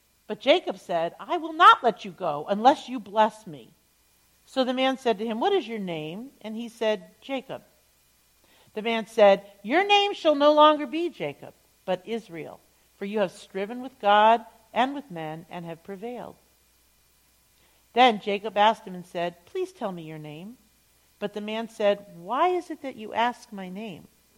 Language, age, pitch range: English, 50-69, 180-245 Hz